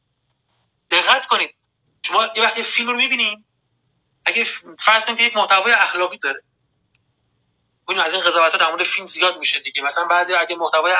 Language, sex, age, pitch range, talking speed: Persian, male, 30-49, 185-240 Hz, 155 wpm